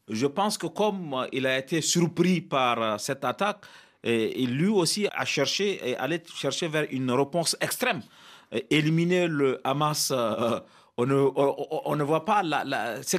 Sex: male